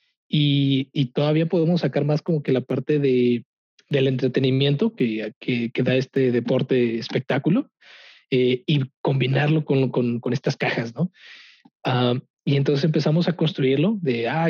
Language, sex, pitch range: Spanish, male, 125-150 Hz